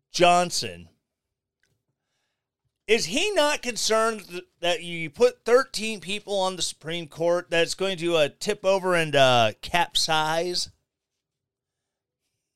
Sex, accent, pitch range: male, American, 150-220 Hz